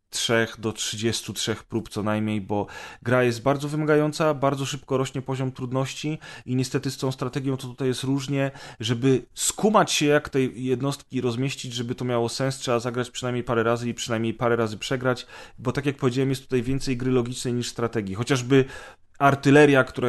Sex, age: male, 30-49